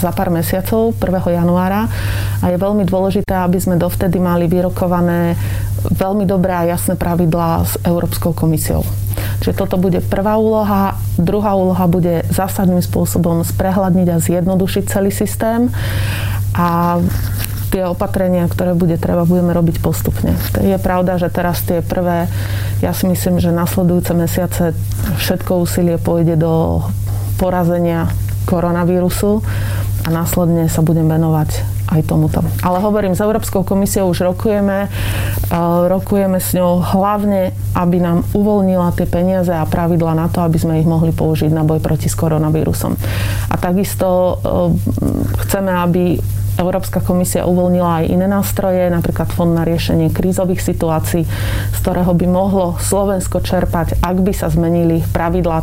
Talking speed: 140 wpm